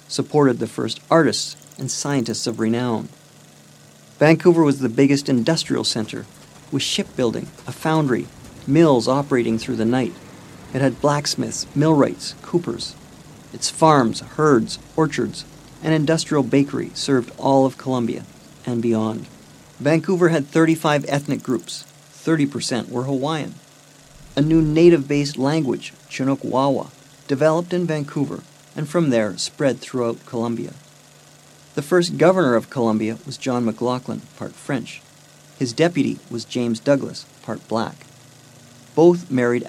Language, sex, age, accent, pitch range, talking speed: English, male, 50-69, American, 125-155 Hz, 125 wpm